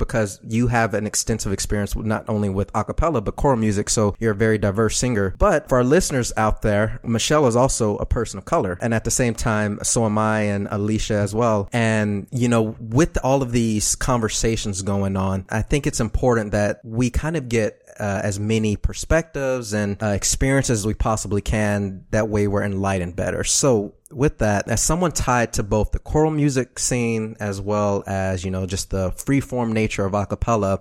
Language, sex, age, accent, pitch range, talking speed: English, male, 20-39, American, 100-120 Hz, 200 wpm